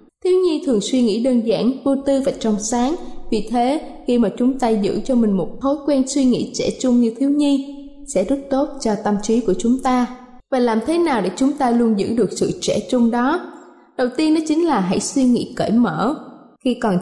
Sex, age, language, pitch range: female, 20-39, Thai, 220-275 Hz